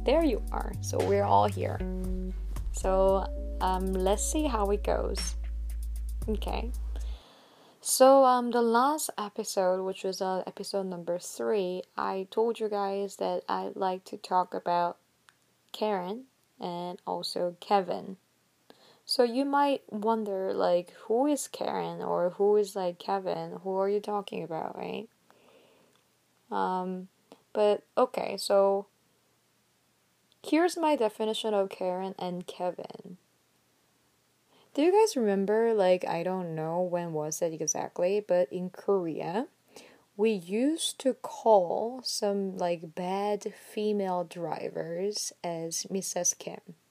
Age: 20-39